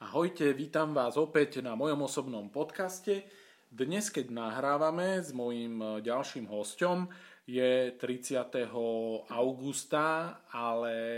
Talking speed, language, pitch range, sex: 100 wpm, Slovak, 115-145 Hz, male